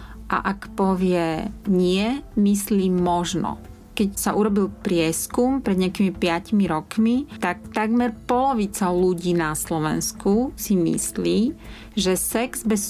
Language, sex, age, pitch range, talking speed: Slovak, female, 30-49, 170-210 Hz, 115 wpm